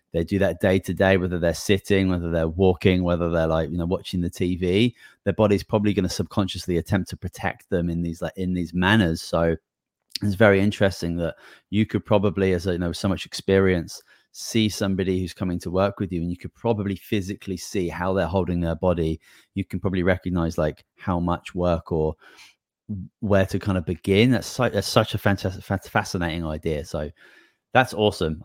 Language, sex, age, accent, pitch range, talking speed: English, male, 30-49, British, 85-100 Hz, 195 wpm